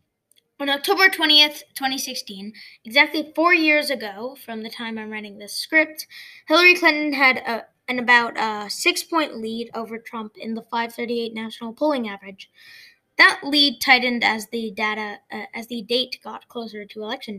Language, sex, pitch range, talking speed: English, female, 225-295 Hz, 160 wpm